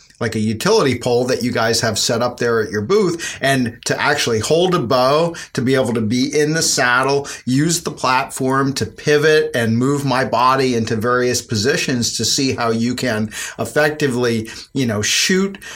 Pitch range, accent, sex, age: 115-145 Hz, American, male, 40-59